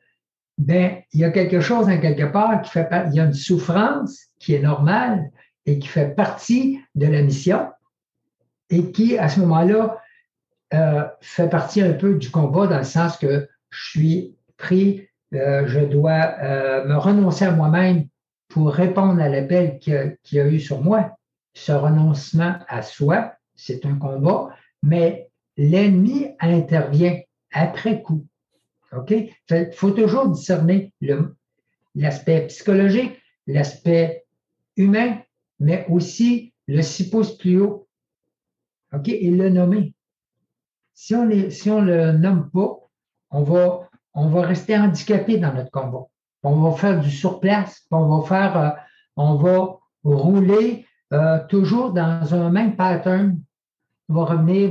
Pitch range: 155-195 Hz